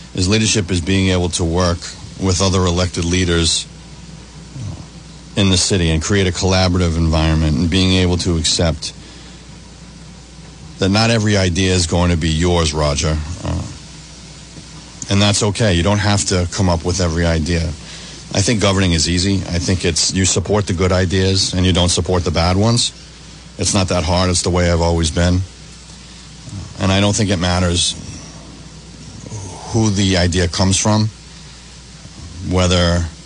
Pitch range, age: 85-95 Hz, 40-59